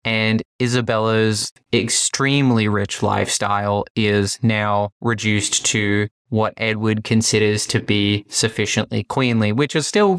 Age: 20-39